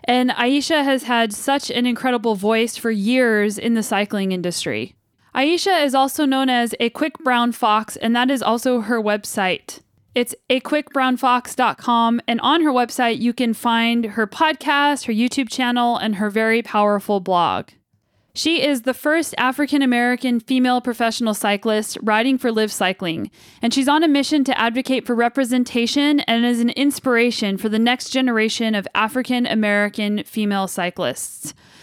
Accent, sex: American, female